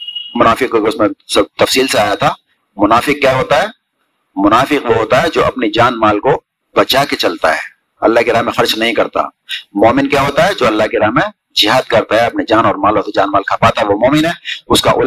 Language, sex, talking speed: Urdu, male, 205 wpm